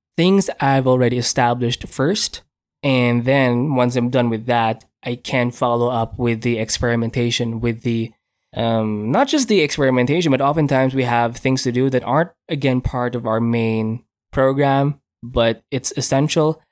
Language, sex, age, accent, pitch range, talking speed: English, male, 20-39, Filipino, 120-140 Hz, 160 wpm